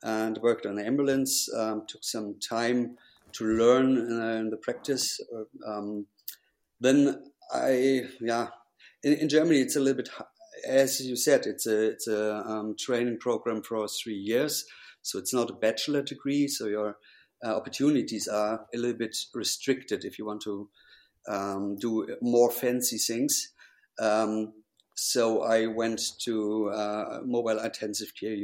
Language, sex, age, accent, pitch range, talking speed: English, male, 50-69, German, 110-125 Hz, 155 wpm